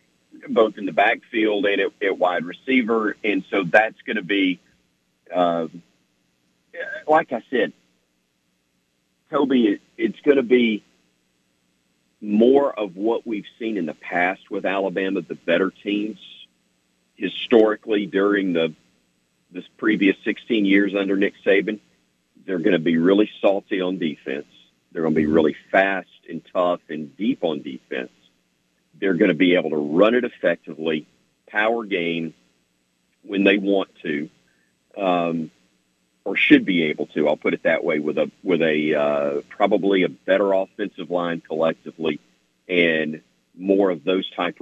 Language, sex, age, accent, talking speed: English, male, 50-69, American, 150 wpm